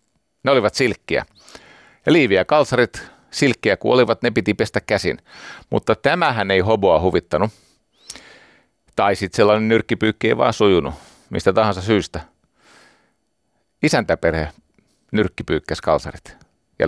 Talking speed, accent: 110 wpm, native